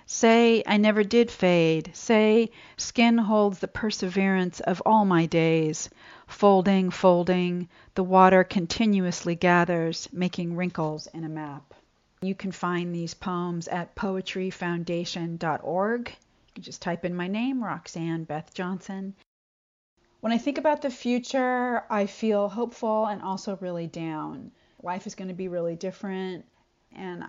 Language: English